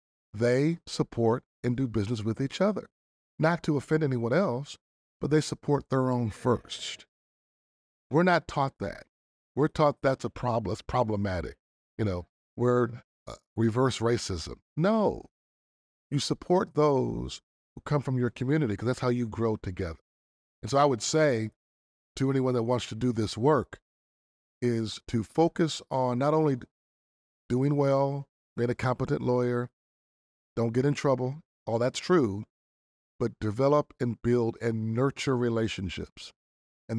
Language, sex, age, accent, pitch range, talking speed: English, male, 50-69, American, 100-145 Hz, 150 wpm